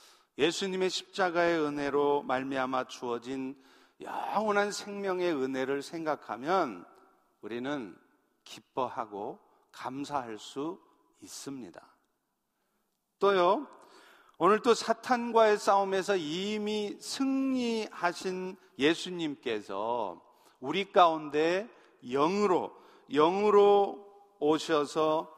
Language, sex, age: Korean, male, 50-69